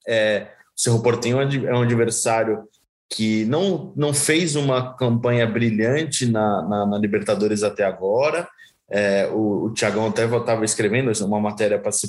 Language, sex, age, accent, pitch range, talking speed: Portuguese, male, 20-39, Brazilian, 110-145 Hz, 145 wpm